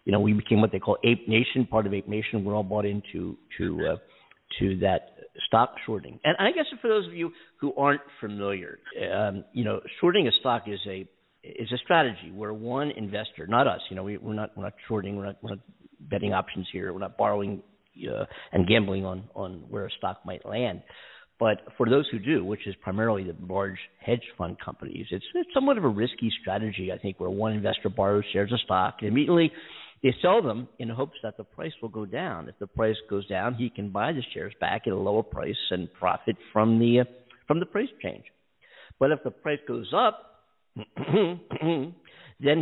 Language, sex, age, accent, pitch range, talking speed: English, male, 50-69, American, 105-145 Hz, 210 wpm